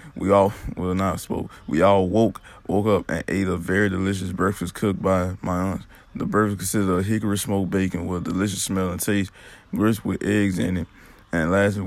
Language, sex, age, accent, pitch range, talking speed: English, male, 20-39, American, 95-100 Hz, 200 wpm